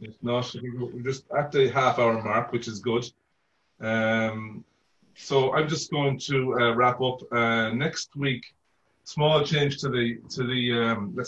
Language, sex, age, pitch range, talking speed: English, male, 30-49, 105-120 Hz, 170 wpm